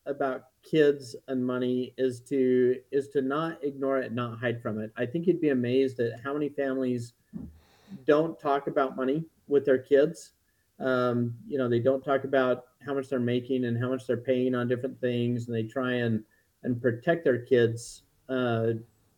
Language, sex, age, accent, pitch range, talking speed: English, male, 40-59, American, 115-140 Hz, 185 wpm